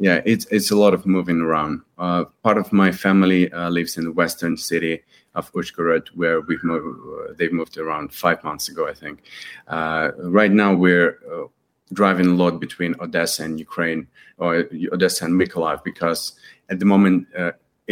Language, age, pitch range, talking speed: English, 30-49, 85-95 Hz, 185 wpm